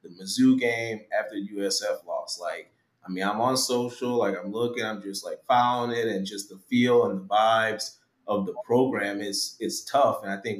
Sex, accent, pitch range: male, American, 105-125 Hz